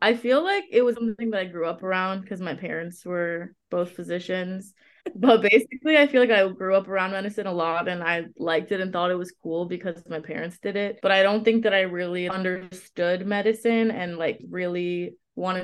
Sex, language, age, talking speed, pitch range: female, English, 20-39, 215 wpm, 170-195 Hz